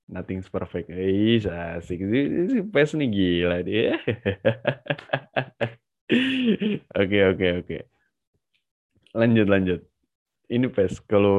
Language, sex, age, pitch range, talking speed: Indonesian, male, 20-39, 90-115 Hz, 85 wpm